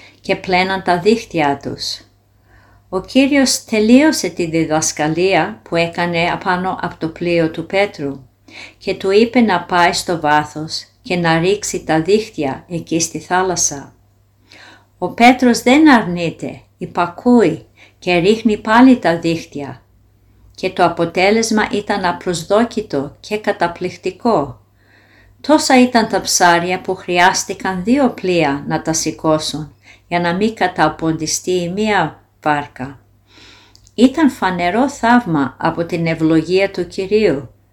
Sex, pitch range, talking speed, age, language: female, 140-200 Hz, 120 wpm, 50-69, Greek